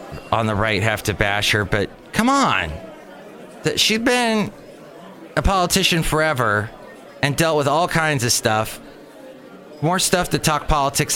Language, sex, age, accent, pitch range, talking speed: English, male, 30-49, American, 105-150 Hz, 145 wpm